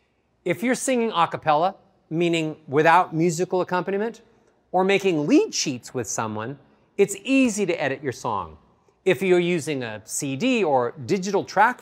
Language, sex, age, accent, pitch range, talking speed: English, male, 40-59, American, 155-225 Hz, 140 wpm